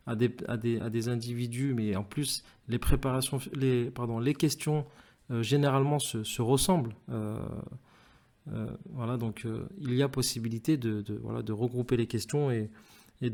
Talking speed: 150 wpm